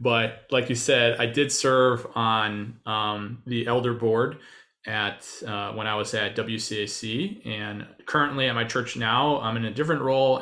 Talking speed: 175 wpm